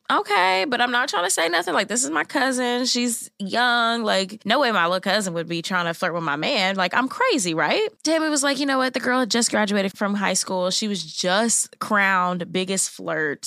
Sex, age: female, 10-29